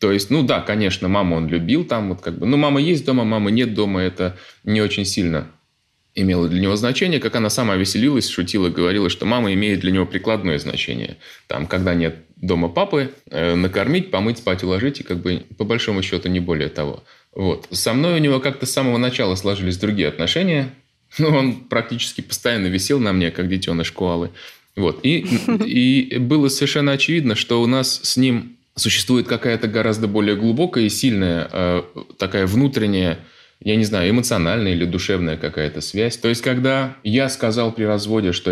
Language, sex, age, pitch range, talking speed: Russian, male, 20-39, 90-125 Hz, 185 wpm